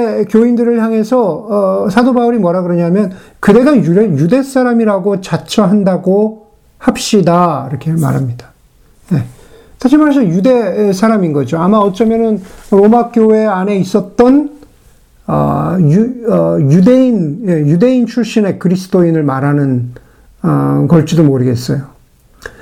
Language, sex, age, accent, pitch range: Korean, male, 50-69, native, 155-225 Hz